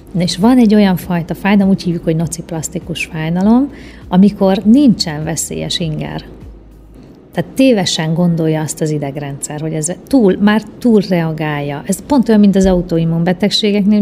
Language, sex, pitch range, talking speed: Hungarian, female, 165-205 Hz, 140 wpm